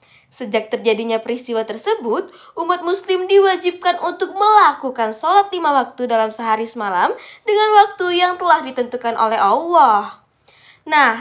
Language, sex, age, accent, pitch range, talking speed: Indonesian, female, 20-39, native, 235-360 Hz, 125 wpm